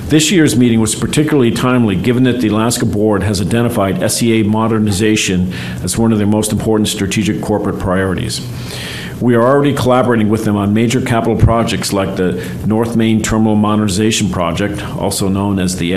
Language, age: English, 50-69